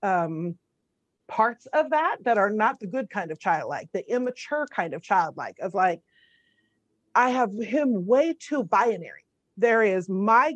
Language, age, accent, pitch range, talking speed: English, 40-59, American, 205-280 Hz, 160 wpm